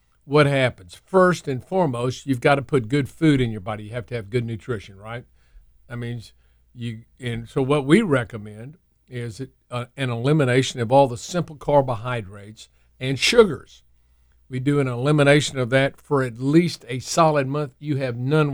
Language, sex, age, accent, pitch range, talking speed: English, male, 50-69, American, 115-140 Hz, 175 wpm